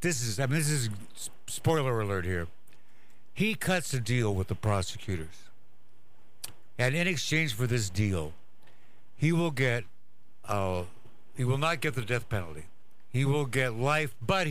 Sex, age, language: male, 60-79, English